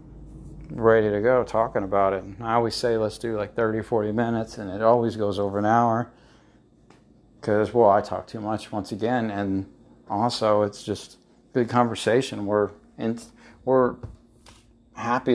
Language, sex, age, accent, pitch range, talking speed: English, male, 50-69, American, 105-120 Hz, 160 wpm